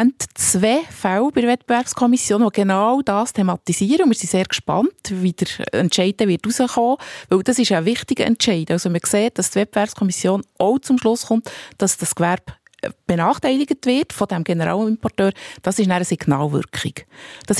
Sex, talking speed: female, 160 wpm